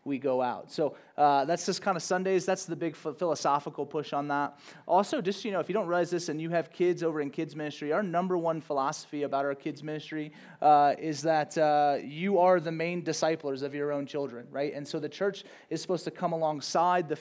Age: 30-49